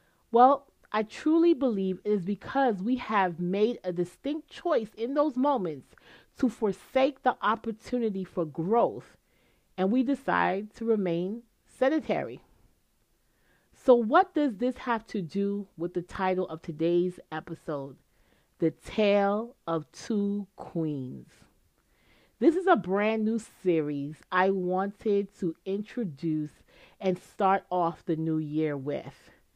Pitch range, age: 175-240 Hz, 40-59